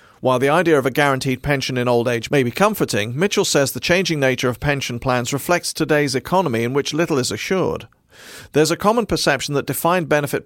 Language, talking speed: English, 205 wpm